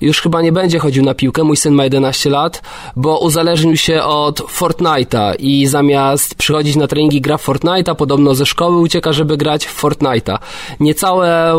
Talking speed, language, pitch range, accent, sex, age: 175 wpm, Polish, 135-165 Hz, native, male, 20-39